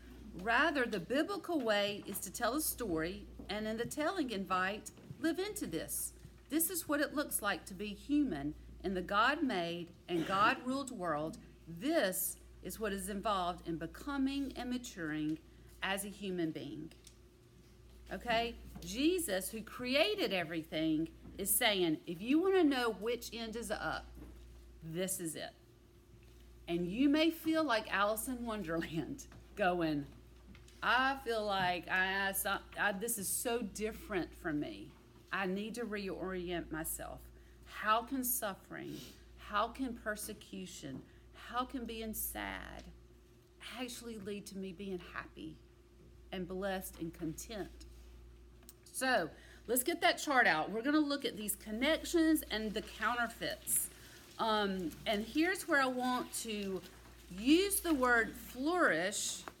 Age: 40-59